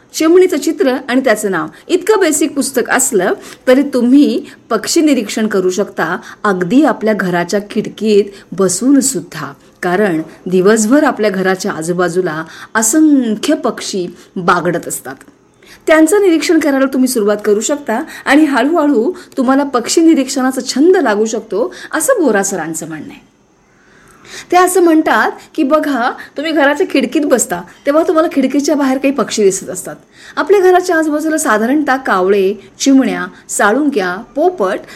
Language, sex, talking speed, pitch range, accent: Marathi, female, 125 wpm, 205-320 Hz, native